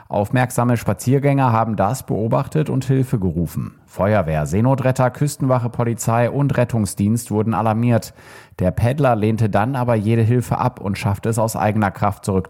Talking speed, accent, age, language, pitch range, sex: 150 wpm, German, 30-49, German, 100-120 Hz, male